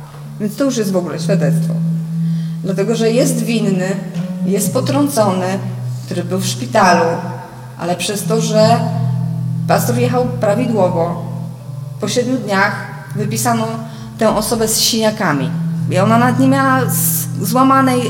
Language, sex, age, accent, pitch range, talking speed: Polish, female, 20-39, native, 145-210 Hz, 130 wpm